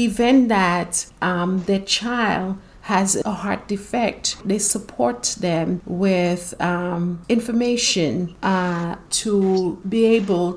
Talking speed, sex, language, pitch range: 110 wpm, female, English, 185-215 Hz